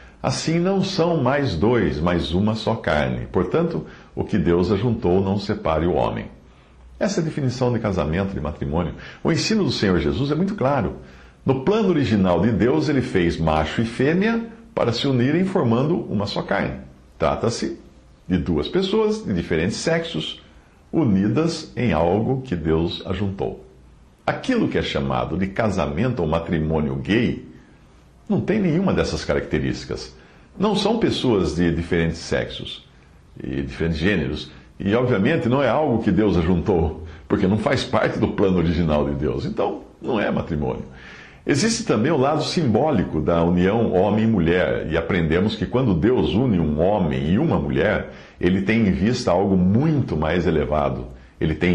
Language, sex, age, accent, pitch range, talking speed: English, male, 60-79, Brazilian, 75-125 Hz, 160 wpm